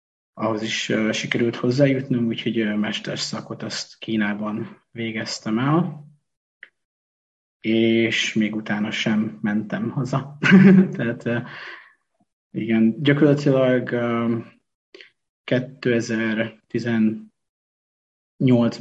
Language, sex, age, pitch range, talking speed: Hungarian, male, 30-49, 110-130 Hz, 75 wpm